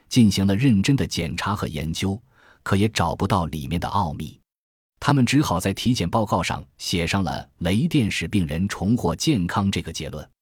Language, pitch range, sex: Chinese, 85-115 Hz, male